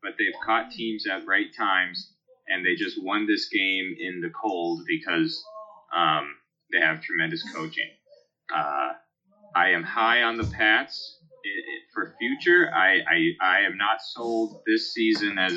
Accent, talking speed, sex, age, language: American, 160 wpm, male, 30-49, English